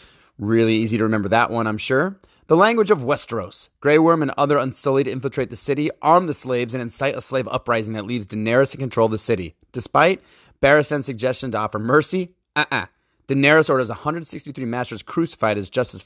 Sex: male